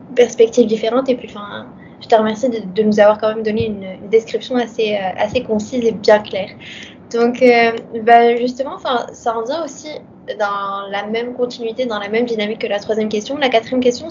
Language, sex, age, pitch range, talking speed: French, female, 20-39, 215-240 Hz, 210 wpm